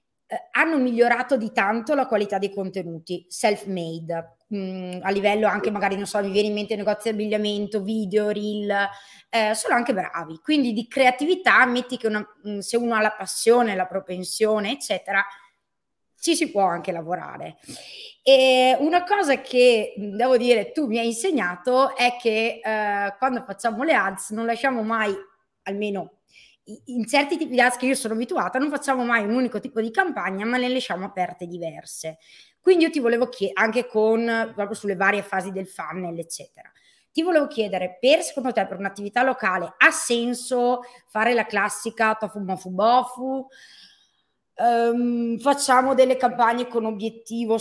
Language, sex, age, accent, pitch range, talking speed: Italian, female, 20-39, native, 200-250 Hz, 165 wpm